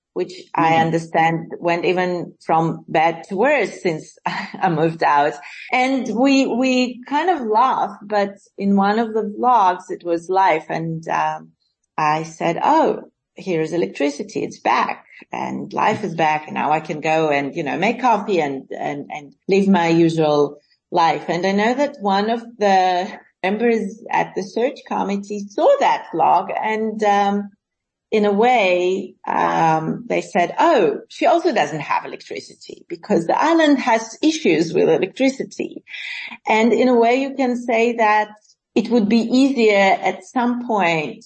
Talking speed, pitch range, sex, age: 160 wpm, 170-235 Hz, female, 30-49